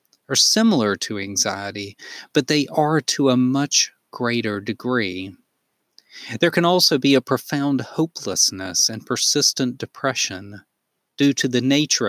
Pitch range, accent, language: 110-145 Hz, American, English